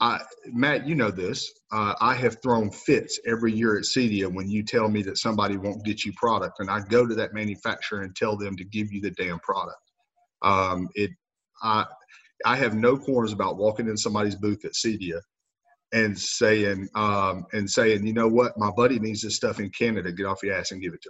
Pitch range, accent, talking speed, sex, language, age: 100-120 Hz, American, 215 wpm, male, English, 40-59